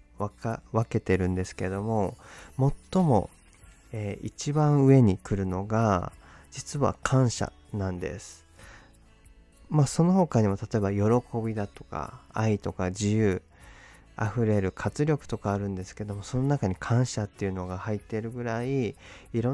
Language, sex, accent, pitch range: Japanese, male, native, 95-120 Hz